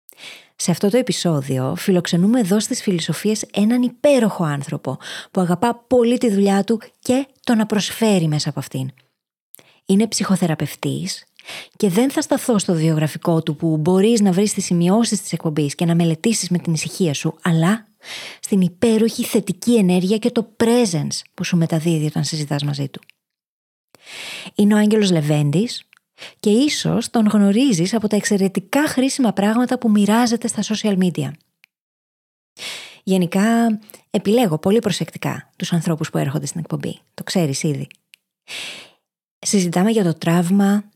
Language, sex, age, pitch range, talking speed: Greek, female, 20-39, 170-230 Hz, 140 wpm